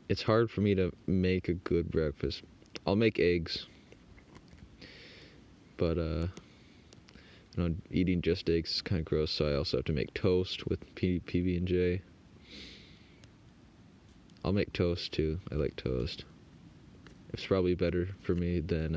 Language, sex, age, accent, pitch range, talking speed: English, male, 20-39, American, 80-95 Hz, 150 wpm